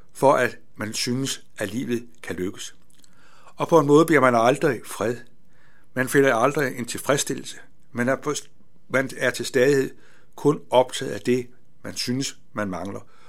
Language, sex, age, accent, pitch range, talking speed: Danish, male, 60-79, native, 125-145 Hz, 155 wpm